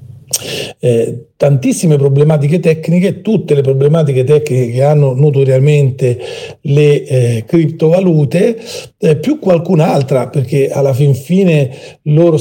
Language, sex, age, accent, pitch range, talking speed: Italian, male, 40-59, native, 135-160 Hz, 105 wpm